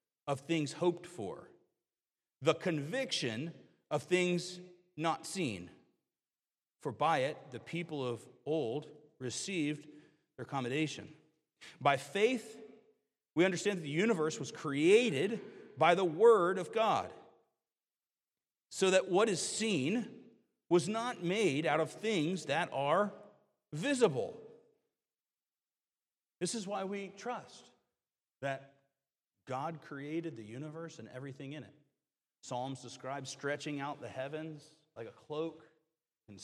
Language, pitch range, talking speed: English, 130-175 Hz, 120 wpm